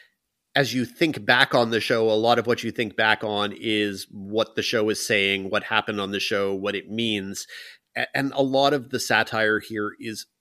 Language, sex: English, male